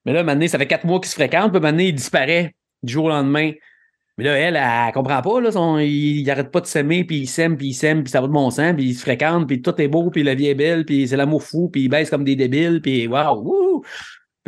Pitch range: 135-160 Hz